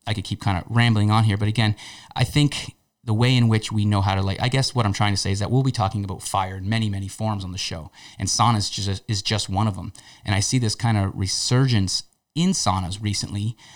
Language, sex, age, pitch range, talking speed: English, male, 30-49, 100-120 Hz, 255 wpm